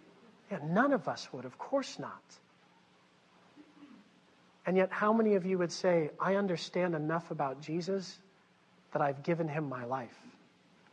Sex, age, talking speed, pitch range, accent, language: male, 40-59, 155 wpm, 135-195 Hz, American, English